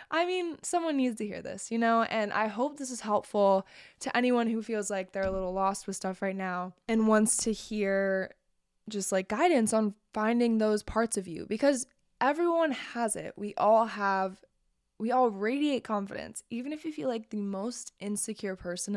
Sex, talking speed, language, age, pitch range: female, 195 wpm, English, 20-39, 195-245 Hz